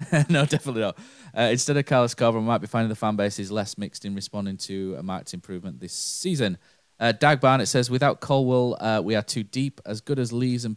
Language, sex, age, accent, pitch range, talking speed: English, male, 20-39, British, 95-120 Hz, 235 wpm